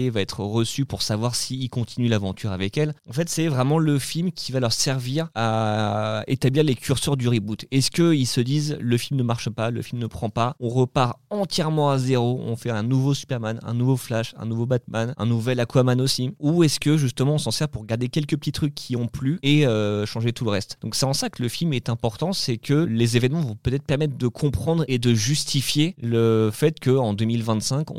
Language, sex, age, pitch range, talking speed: French, male, 20-39, 115-140 Hz, 230 wpm